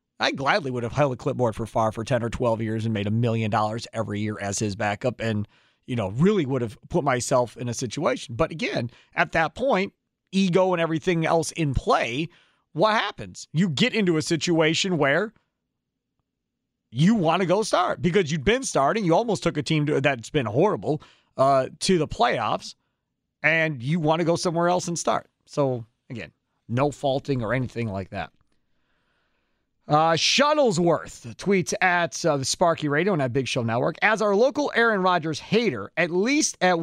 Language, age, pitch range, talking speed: English, 40-59, 120-170 Hz, 185 wpm